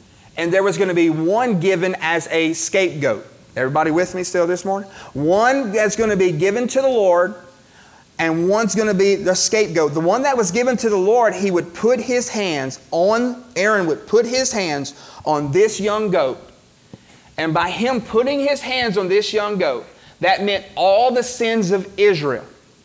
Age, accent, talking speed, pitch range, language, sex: 30-49, American, 190 wpm, 165-220 Hz, English, male